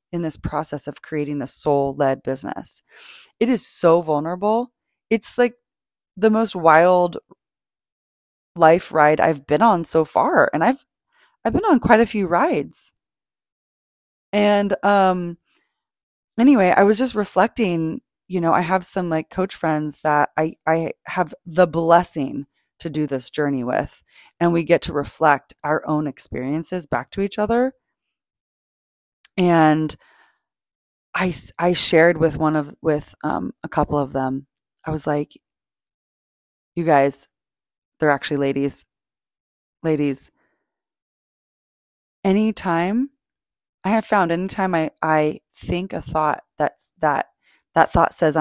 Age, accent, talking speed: 20-39, American, 140 wpm